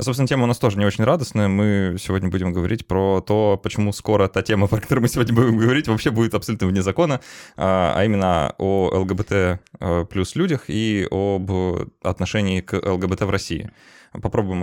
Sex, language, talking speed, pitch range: male, Russian, 175 wpm, 90-110 Hz